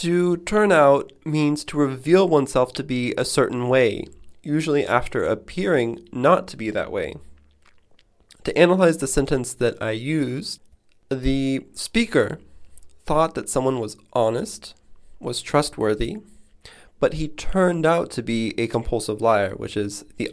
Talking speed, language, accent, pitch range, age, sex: 140 wpm, English, American, 105-140 Hz, 20-39, male